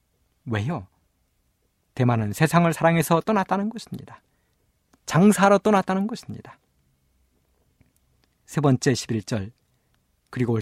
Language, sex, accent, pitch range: Korean, male, native, 105-180 Hz